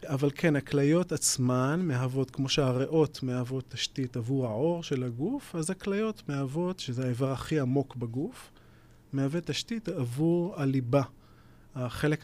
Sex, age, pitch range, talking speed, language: male, 30-49, 125-155 Hz, 125 wpm, Hebrew